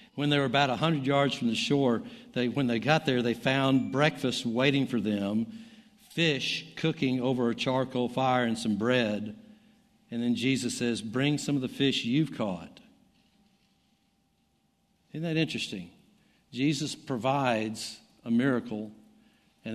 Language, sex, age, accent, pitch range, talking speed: English, male, 60-79, American, 115-150 Hz, 150 wpm